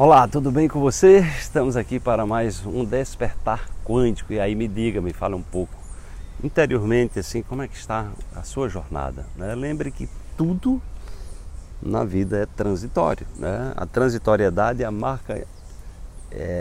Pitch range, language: 85-115 Hz, Portuguese